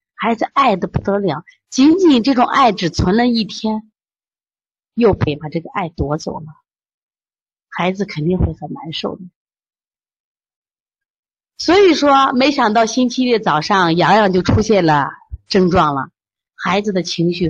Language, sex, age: Chinese, female, 30-49